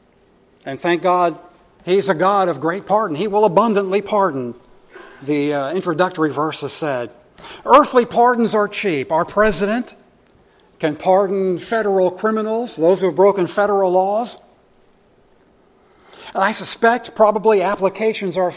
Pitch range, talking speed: 175-215 Hz, 125 wpm